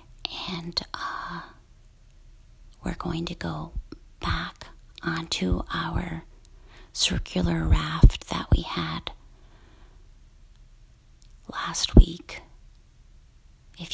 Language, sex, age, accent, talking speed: English, female, 40-59, American, 75 wpm